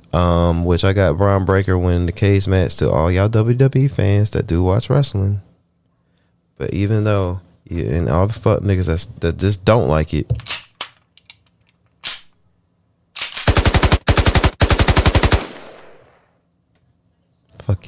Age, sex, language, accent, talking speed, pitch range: 20-39, male, English, American, 120 wpm, 80-100 Hz